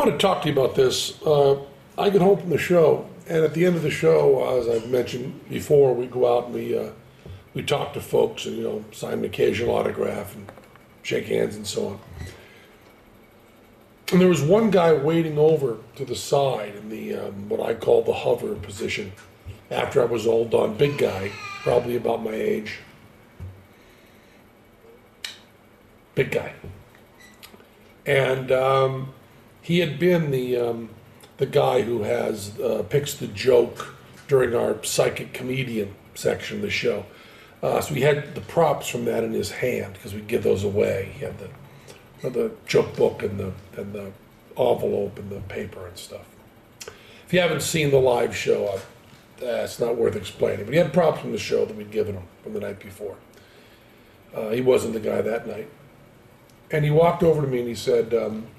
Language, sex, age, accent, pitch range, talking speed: English, male, 50-69, American, 115-160 Hz, 185 wpm